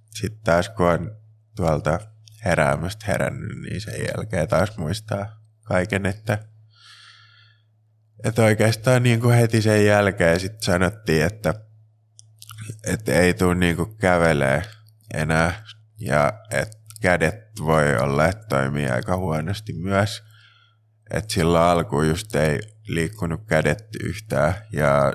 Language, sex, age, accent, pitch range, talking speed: Finnish, male, 20-39, native, 85-110 Hz, 115 wpm